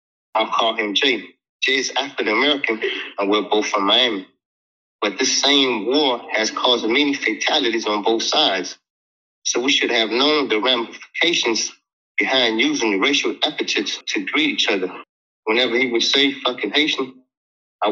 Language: English